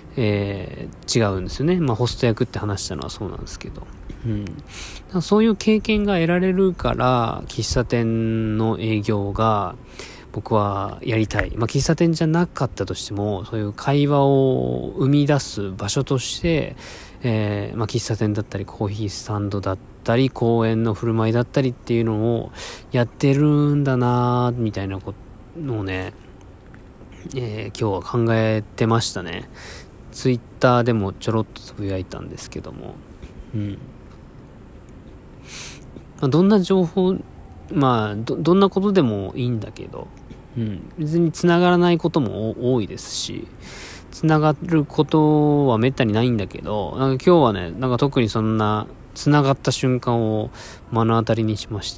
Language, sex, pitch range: Japanese, male, 105-135 Hz